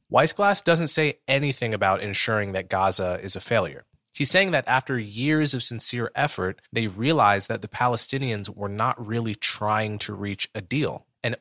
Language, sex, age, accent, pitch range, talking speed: English, male, 20-39, American, 105-135 Hz, 175 wpm